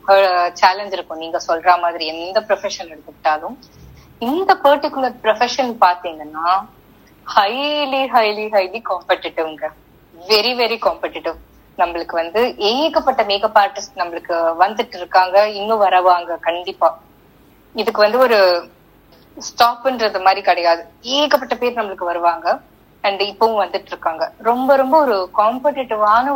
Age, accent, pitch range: 20-39, native, 175-240 Hz